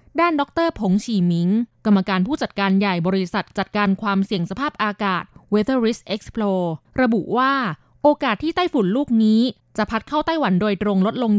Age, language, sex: 20-39, Thai, female